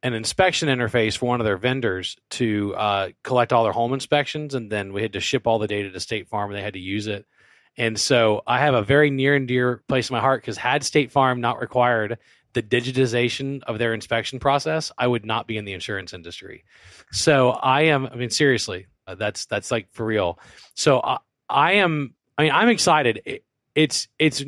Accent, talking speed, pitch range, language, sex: American, 215 wpm, 110-135 Hz, English, male